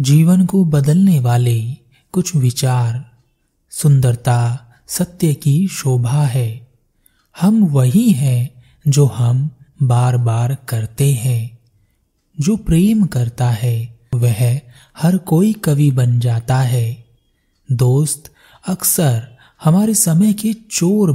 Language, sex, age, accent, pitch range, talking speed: Hindi, male, 30-49, native, 125-165 Hz, 105 wpm